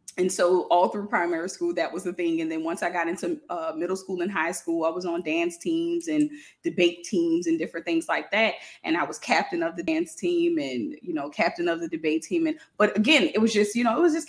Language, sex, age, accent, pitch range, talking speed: English, female, 20-39, American, 170-275 Hz, 260 wpm